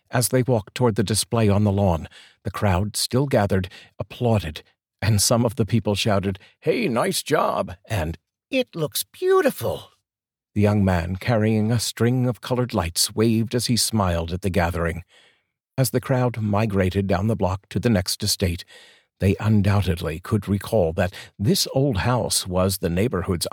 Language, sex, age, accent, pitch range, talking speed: English, male, 50-69, American, 95-120 Hz, 165 wpm